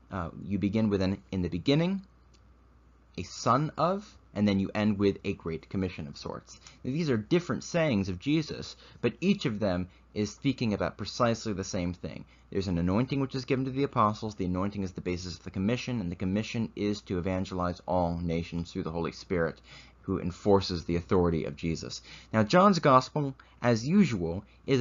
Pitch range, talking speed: 90-120 Hz, 190 wpm